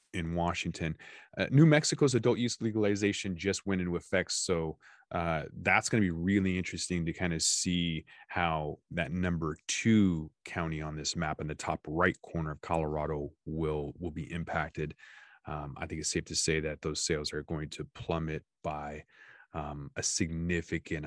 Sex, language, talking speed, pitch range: male, English, 170 wpm, 80-105 Hz